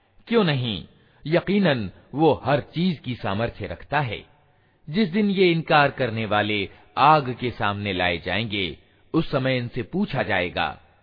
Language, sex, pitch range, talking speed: Hindi, male, 105-160 Hz, 140 wpm